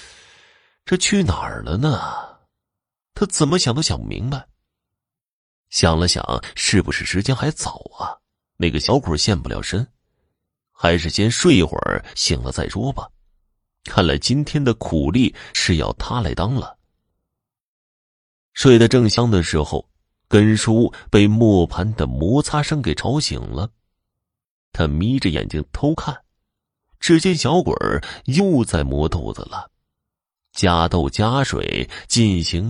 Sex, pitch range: male, 85-135 Hz